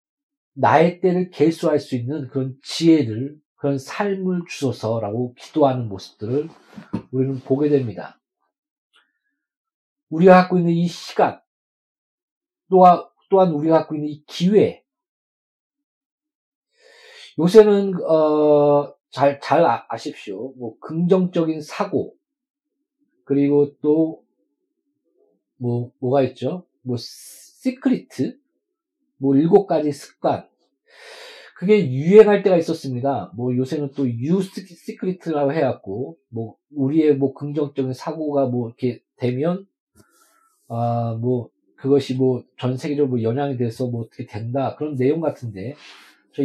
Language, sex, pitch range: Korean, male, 130-215 Hz